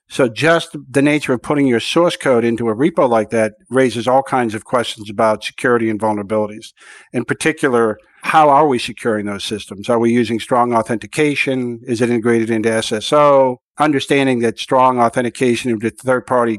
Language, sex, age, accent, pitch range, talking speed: English, male, 50-69, American, 115-140 Hz, 170 wpm